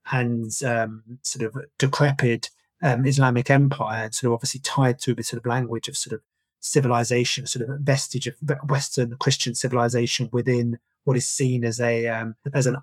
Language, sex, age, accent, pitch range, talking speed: English, male, 30-49, British, 120-145 Hz, 180 wpm